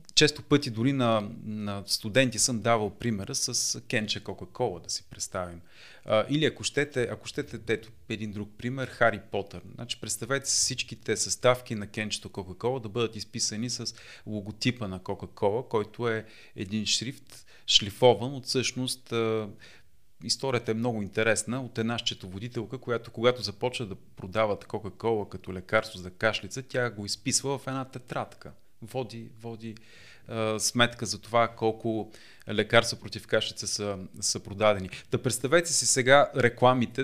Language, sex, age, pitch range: Bulgarian, male, 30-49, 105-125 Hz